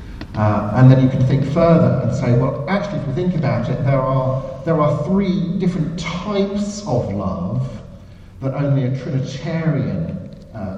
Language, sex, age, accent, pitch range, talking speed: English, male, 50-69, British, 125-150 Hz, 165 wpm